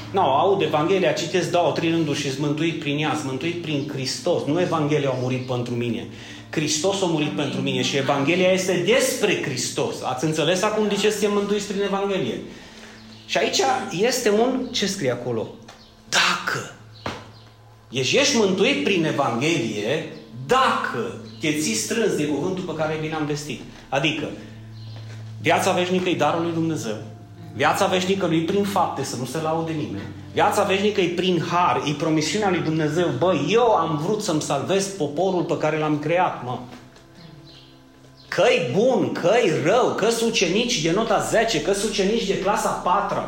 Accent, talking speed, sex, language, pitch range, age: native, 160 wpm, male, Romanian, 125-190 Hz, 30-49